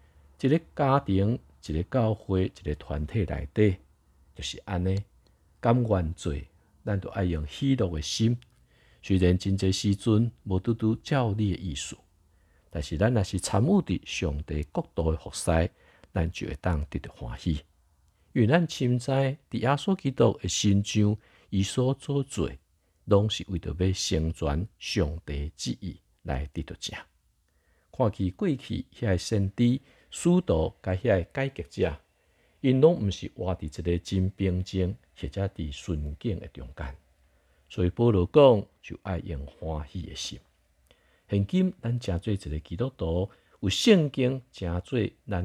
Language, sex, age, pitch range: Chinese, male, 50-69, 75-105 Hz